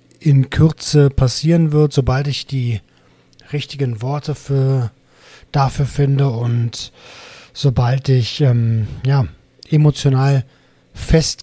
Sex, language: male, German